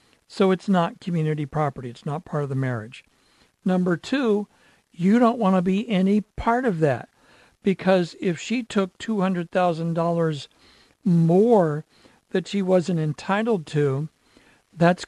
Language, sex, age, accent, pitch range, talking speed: English, male, 60-79, American, 150-195 Hz, 135 wpm